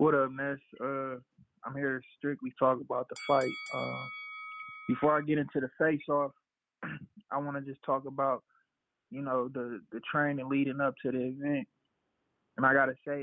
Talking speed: 175 wpm